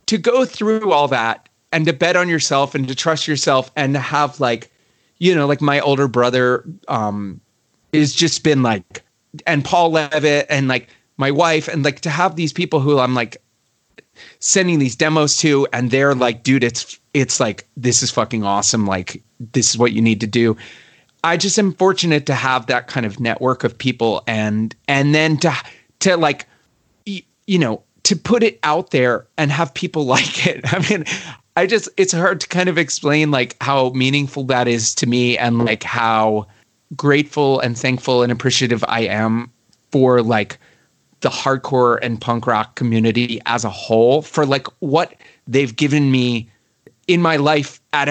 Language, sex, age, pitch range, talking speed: English, male, 30-49, 120-160 Hz, 180 wpm